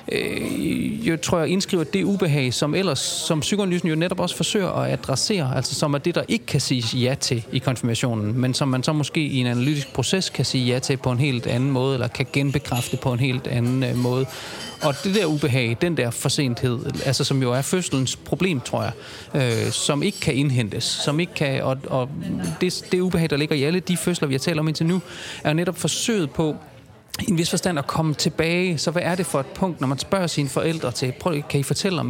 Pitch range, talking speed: 130-170 Hz, 230 wpm